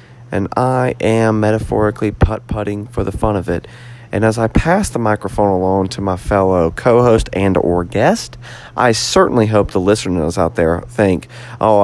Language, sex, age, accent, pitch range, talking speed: English, male, 30-49, American, 110-165 Hz, 165 wpm